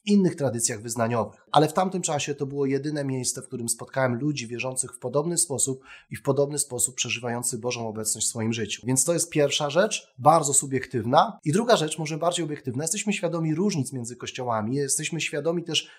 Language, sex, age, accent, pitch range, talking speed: Polish, male, 30-49, native, 130-170 Hz, 190 wpm